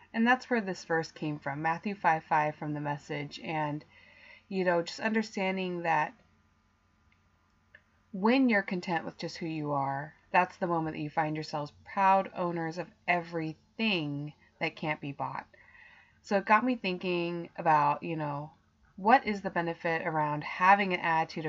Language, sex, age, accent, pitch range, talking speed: English, female, 20-39, American, 155-195 Hz, 160 wpm